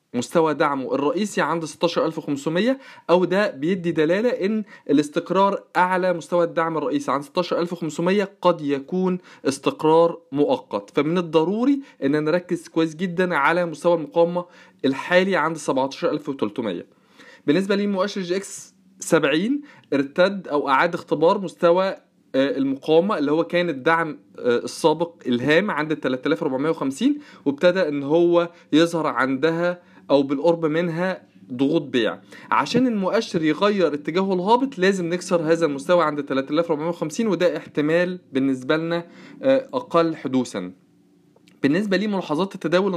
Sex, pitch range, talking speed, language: male, 155-185 Hz, 115 wpm, Arabic